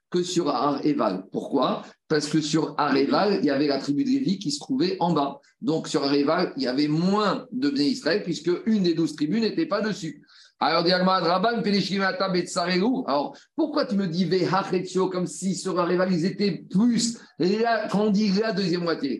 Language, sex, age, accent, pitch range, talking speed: French, male, 50-69, French, 155-210 Hz, 170 wpm